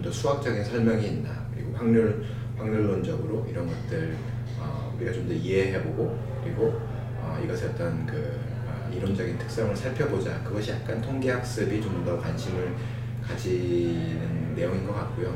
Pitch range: 115-125 Hz